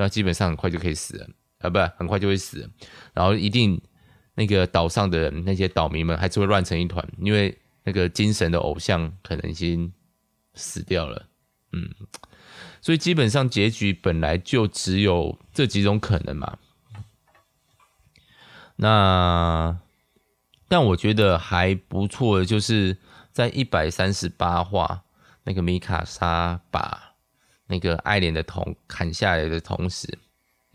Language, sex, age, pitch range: Chinese, male, 20-39, 85-105 Hz